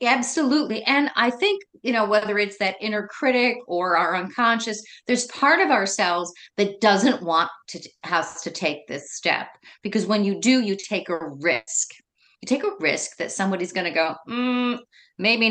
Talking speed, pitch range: 175 wpm, 195-250 Hz